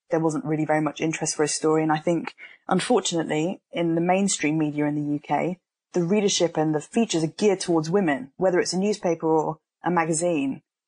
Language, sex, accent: English, female, British